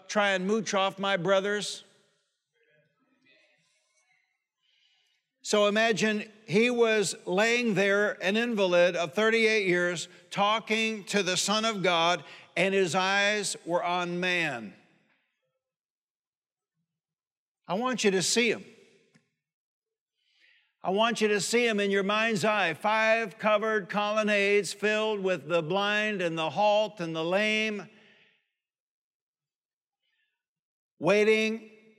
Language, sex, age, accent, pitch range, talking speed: English, male, 60-79, American, 190-220 Hz, 110 wpm